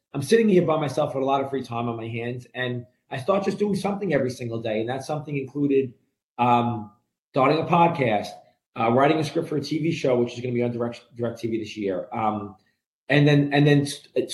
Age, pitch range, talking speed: 30-49, 125-160 Hz, 235 wpm